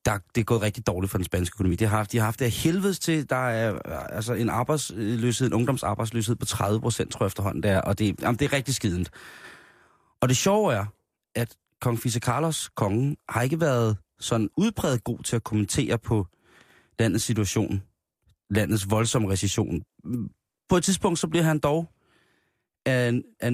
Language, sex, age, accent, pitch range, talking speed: Danish, male, 30-49, native, 105-135 Hz, 190 wpm